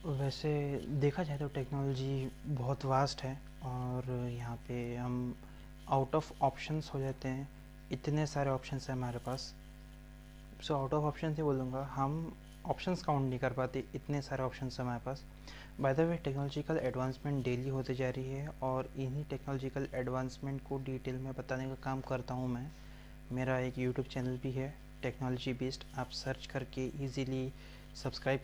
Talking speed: 165 wpm